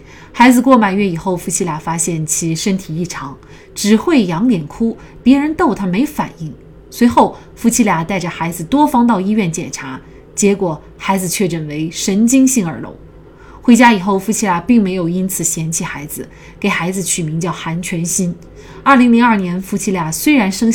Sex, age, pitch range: female, 20-39, 170-225 Hz